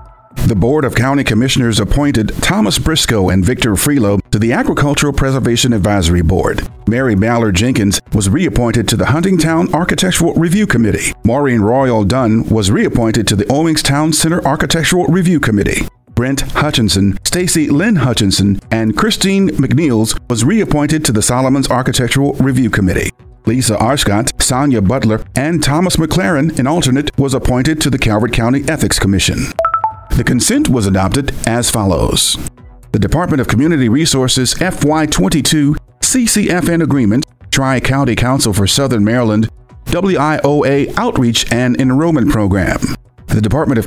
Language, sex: English, male